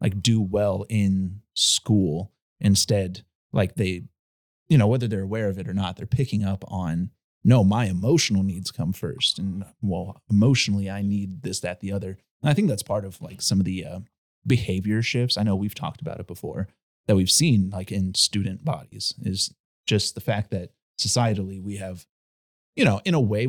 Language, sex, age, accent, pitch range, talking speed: English, male, 30-49, American, 95-120 Hz, 195 wpm